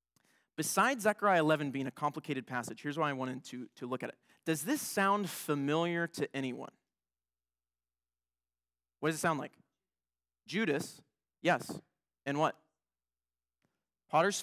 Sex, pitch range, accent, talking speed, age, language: male, 130-185 Hz, American, 135 wpm, 20-39, English